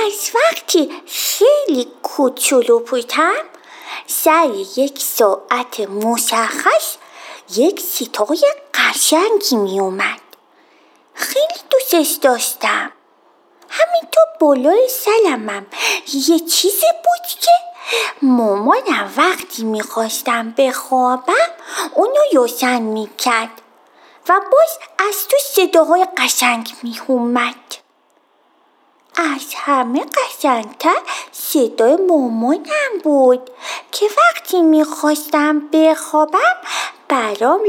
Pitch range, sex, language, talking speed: 250-345 Hz, female, Persian, 80 wpm